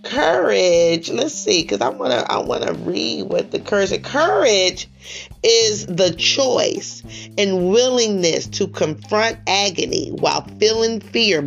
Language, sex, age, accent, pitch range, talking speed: English, female, 30-49, American, 190-235 Hz, 130 wpm